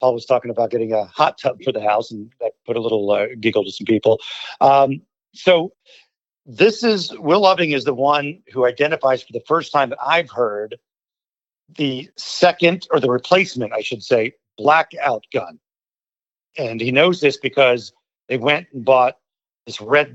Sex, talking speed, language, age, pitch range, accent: male, 180 wpm, English, 50-69, 125-160 Hz, American